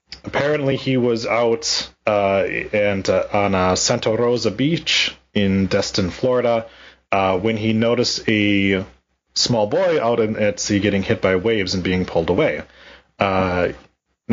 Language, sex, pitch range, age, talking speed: English, male, 90-115 Hz, 30-49, 140 wpm